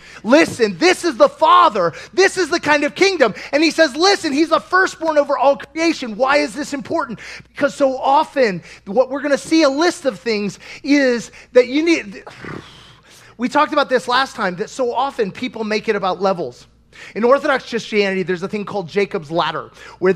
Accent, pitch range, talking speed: American, 210-310 Hz, 190 wpm